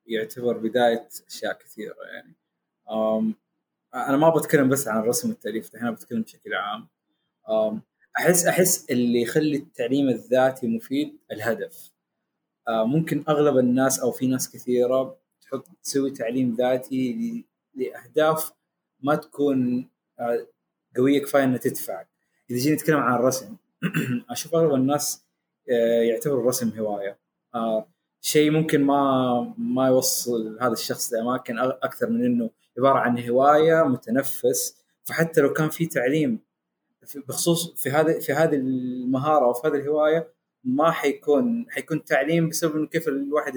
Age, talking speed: 20-39, 125 wpm